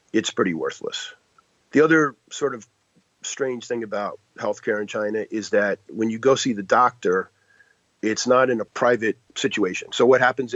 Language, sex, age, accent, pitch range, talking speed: English, male, 40-59, American, 110-130 Hz, 170 wpm